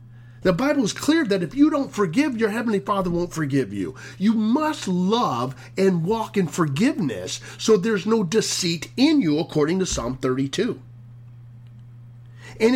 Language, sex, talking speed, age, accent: English, male, 155 wpm, 40-59, American